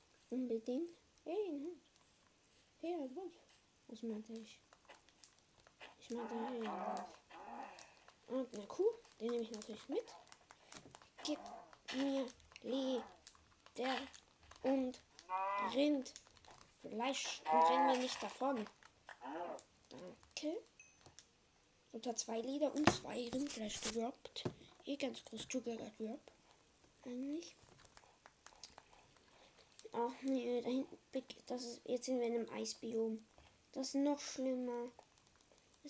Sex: female